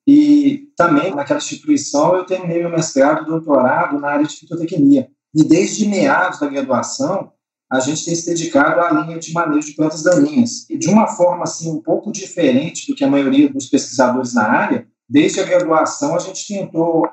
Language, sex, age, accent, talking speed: Portuguese, male, 40-59, Brazilian, 185 wpm